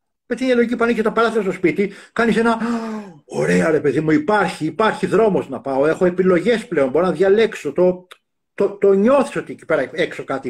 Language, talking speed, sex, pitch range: Greek, 210 wpm, male, 150-225 Hz